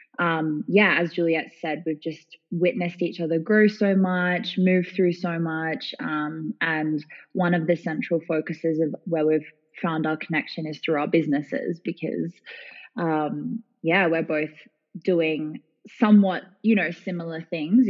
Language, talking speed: English, 150 wpm